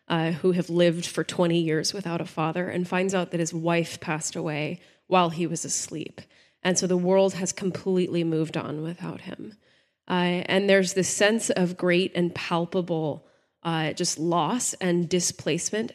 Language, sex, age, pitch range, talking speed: English, female, 20-39, 165-185 Hz, 175 wpm